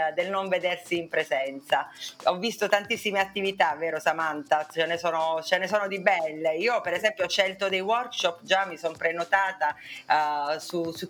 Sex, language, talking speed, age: female, Italian, 180 wpm, 30-49